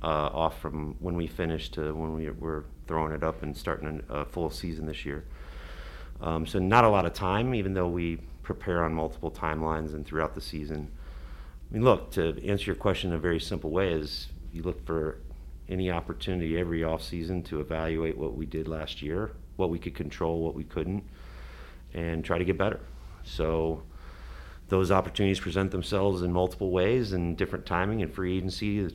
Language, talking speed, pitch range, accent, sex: English, 195 wpm, 75-95 Hz, American, male